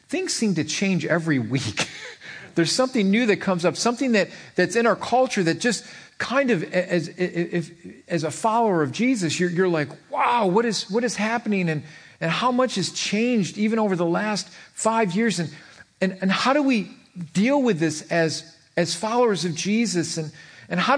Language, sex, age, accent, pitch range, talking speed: English, male, 40-59, American, 165-225 Hz, 195 wpm